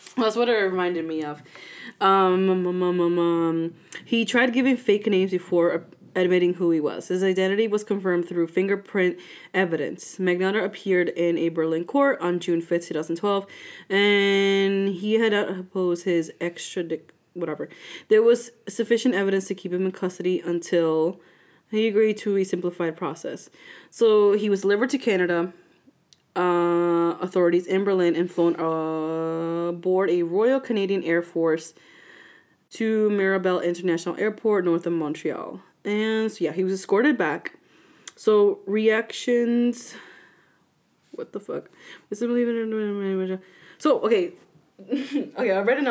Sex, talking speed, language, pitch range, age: female, 135 wpm, English, 175-225 Hz, 20-39